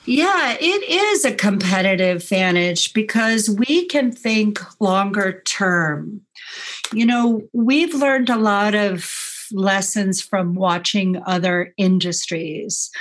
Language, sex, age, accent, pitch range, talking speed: English, female, 50-69, American, 180-225 Hz, 110 wpm